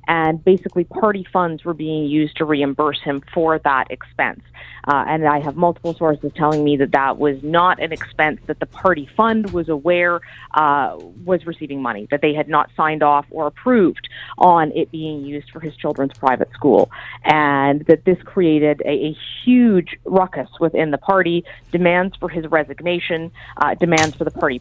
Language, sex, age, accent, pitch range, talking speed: English, female, 30-49, American, 150-180 Hz, 180 wpm